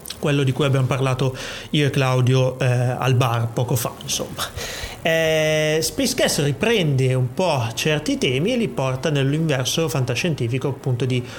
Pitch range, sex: 130-155 Hz, male